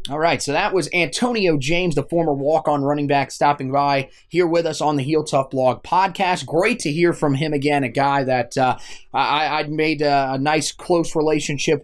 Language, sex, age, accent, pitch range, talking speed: English, male, 20-39, American, 140-165 Hz, 210 wpm